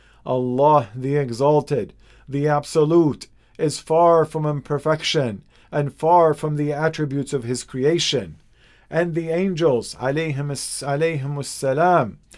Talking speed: 105 wpm